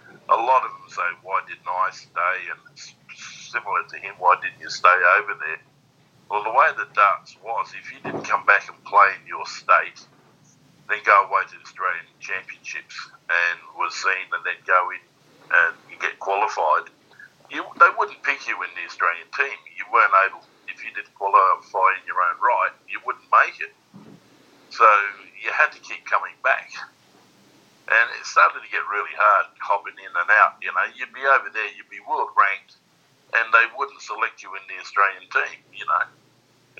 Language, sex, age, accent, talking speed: English, male, 50-69, Australian, 190 wpm